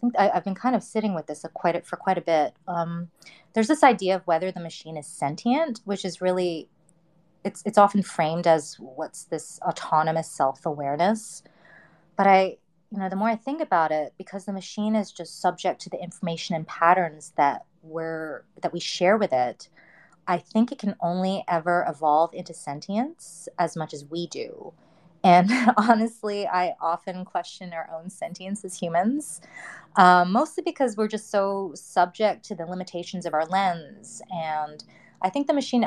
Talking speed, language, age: 175 wpm, English, 30-49